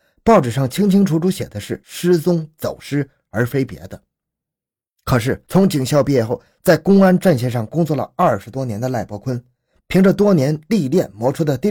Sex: male